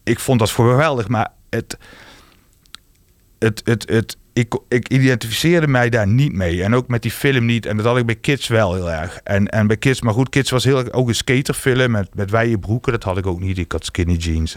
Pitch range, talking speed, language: 95-115 Hz, 230 wpm, Dutch